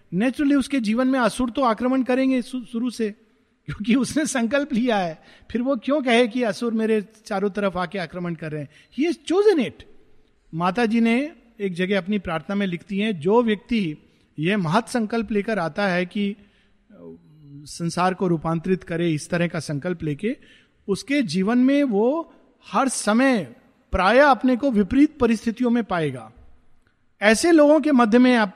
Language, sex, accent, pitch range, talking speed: Hindi, male, native, 165-245 Hz, 160 wpm